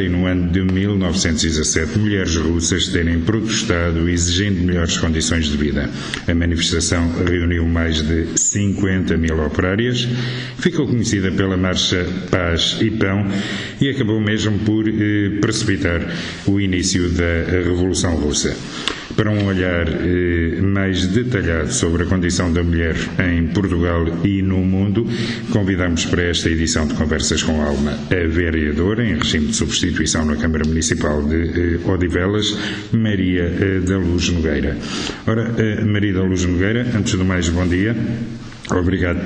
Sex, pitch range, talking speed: male, 85-100 Hz, 140 wpm